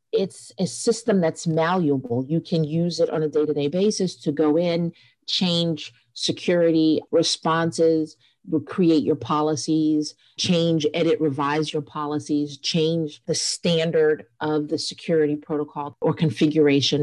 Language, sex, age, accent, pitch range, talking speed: English, female, 40-59, American, 150-170 Hz, 125 wpm